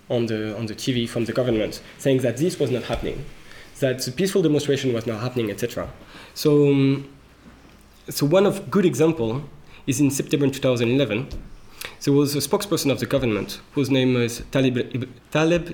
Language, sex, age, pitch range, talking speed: English, male, 20-39, 120-160 Hz, 170 wpm